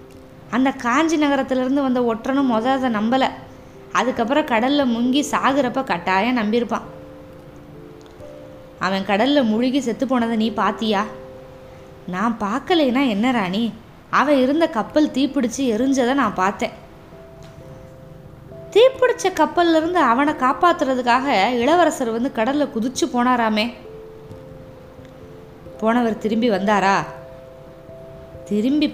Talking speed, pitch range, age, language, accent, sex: 95 wpm, 200-275 Hz, 20-39, Tamil, native, female